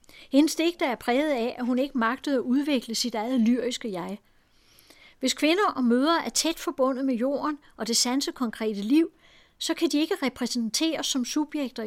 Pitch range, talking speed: 235-290 Hz, 175 wpm